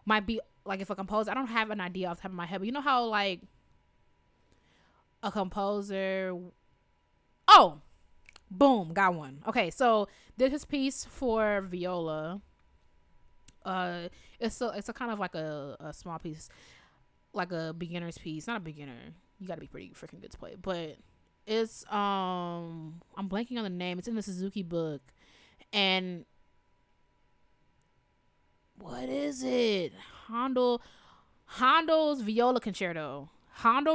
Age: 20-39